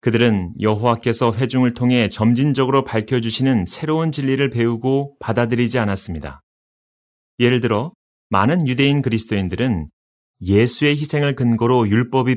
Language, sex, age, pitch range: Korean, male, 30-49, 110-140 Hz